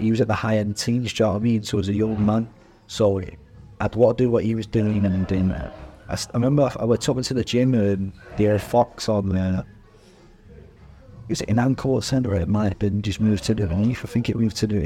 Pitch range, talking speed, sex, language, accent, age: 100-115 Hz, 270 wpm, male, English, British, 30-49